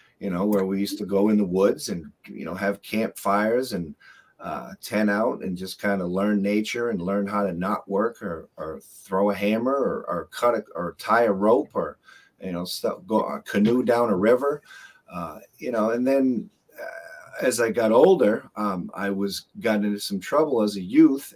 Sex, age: male, 30-49